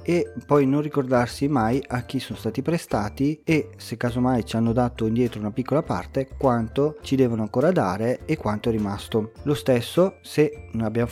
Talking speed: 185 wpm